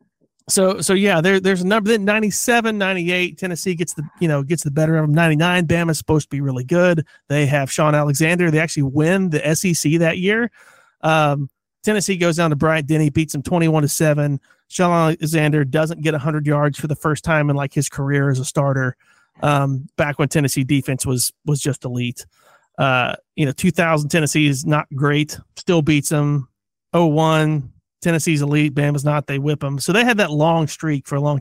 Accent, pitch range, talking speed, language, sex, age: American, 145-180 Hz, 200 wpm, English, male, 30-49